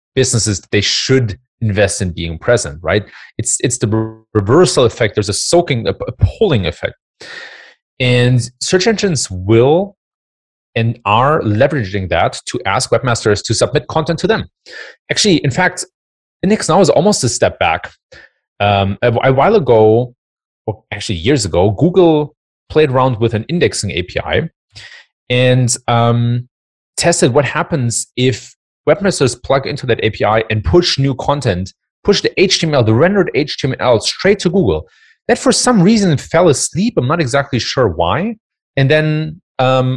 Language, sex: English, male